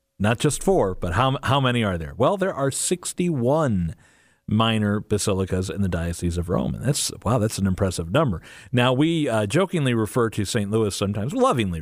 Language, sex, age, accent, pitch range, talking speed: English, male, 40-59, American, 95-150 Hz, 190 wpm